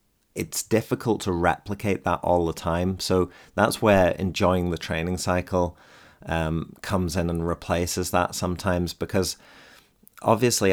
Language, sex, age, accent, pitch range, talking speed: English, male, 30-49, British, 85-95 Hz, 135 wpm